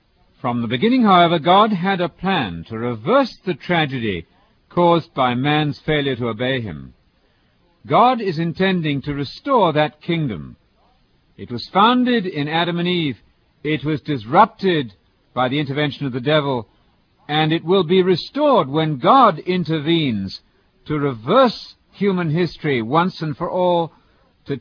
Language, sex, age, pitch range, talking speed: English, male, 60-79, 130-180 Hz, 145 wpm